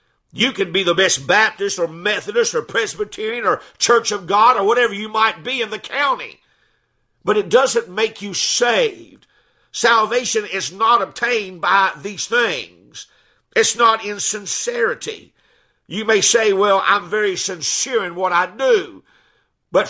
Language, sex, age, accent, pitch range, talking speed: English, male, 50-69, American, 195-240 Hz, 155 wpm